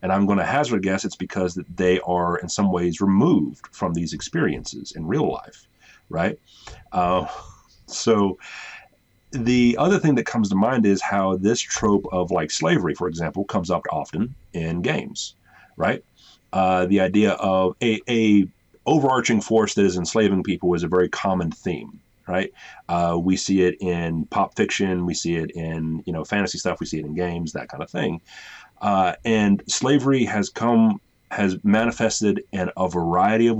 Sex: male